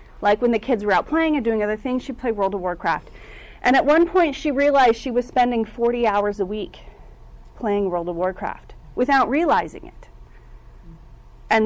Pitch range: 205-270 Hz